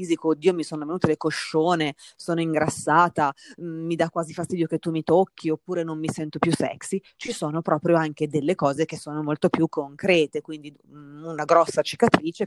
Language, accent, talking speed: Italian, native, 190 wpm